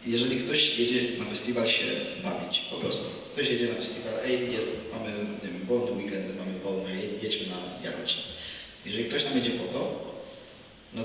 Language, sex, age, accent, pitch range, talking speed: Polish, male, 30-49, native, 115-130 Hz, 180 wpm